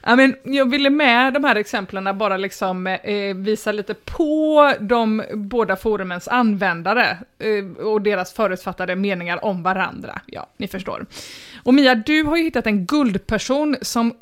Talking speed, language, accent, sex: 155 wpm, English, Swedish, female